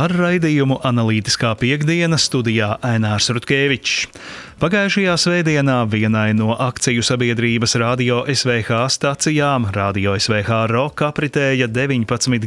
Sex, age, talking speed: male, 30-49, 100 wpm